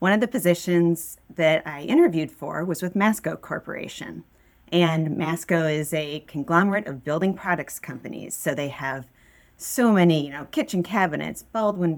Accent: American